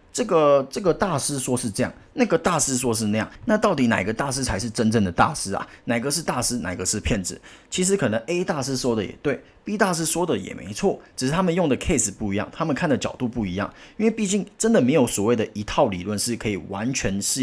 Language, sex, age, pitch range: Chinese, male, 30-49, 105-140 Hz